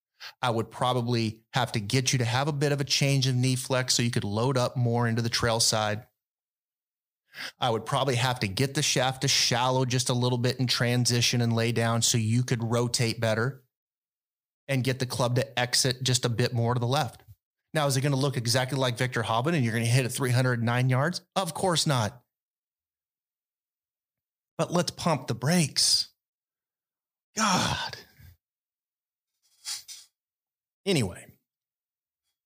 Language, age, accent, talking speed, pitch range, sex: English, 30-49, American, 170 wpm, 120-155 Hz, male